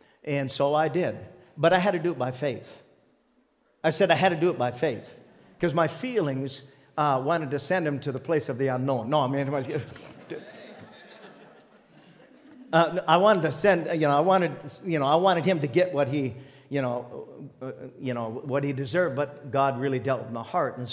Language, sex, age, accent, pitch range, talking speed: English, male, 50-69, American, 145-200 Hz, 210 wpm